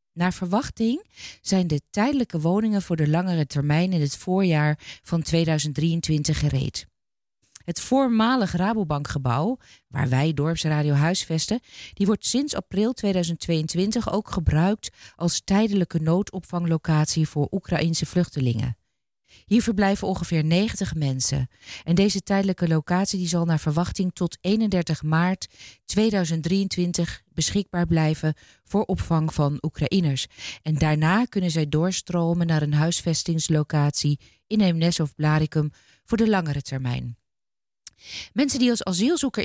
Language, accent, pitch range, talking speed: Dutch, Dutch, 150-195 Hz, 115 wpm